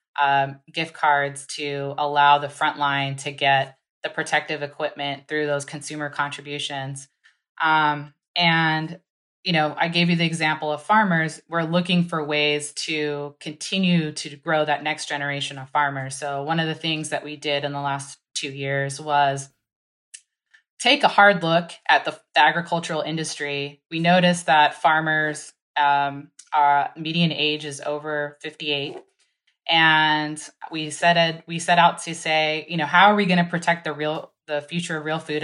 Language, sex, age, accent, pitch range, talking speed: English, female, 20-39, American, 145-165 Hz, 165 wpm